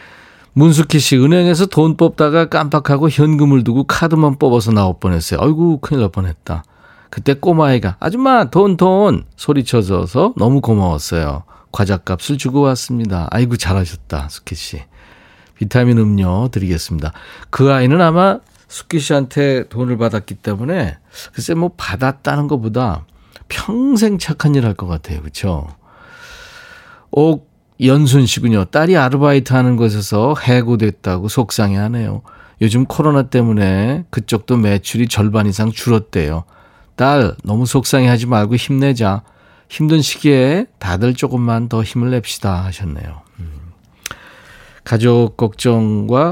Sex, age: male, 40-59